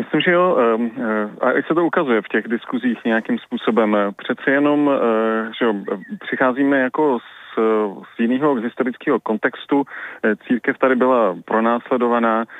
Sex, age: male, 30-49